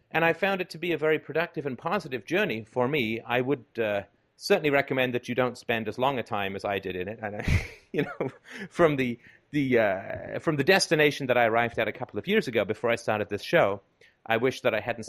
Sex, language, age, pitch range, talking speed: male, English, 30-49, 100-135 Hz, 245 wpm